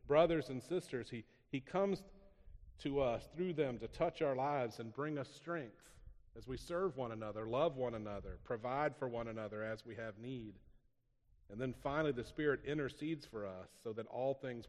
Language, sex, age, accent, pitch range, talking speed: English, male, 40-59, American, 115-155 Hz, 190 wpm